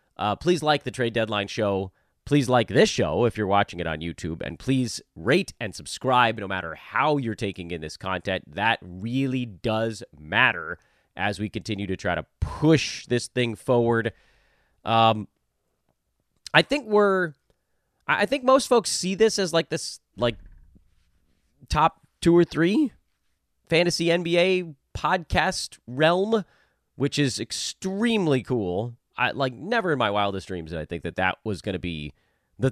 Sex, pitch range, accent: male, 90-150 Hz, American